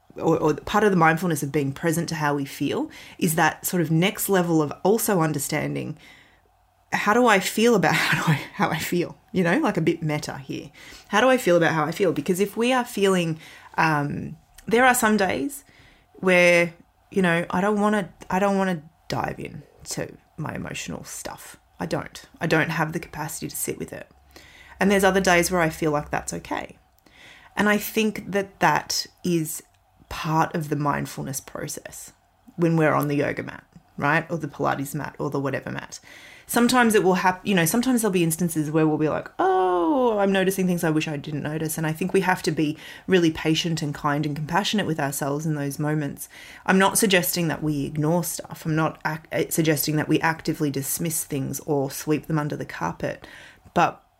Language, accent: English, Australian